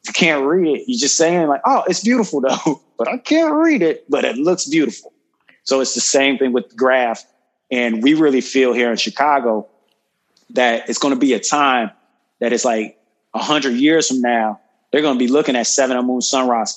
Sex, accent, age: male, American, 20-39